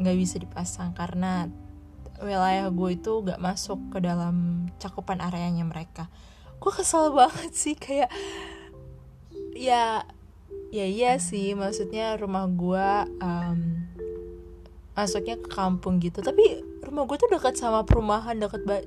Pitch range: 175-225 Hz